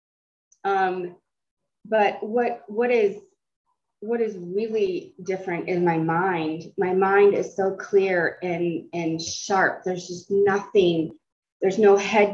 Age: 20-39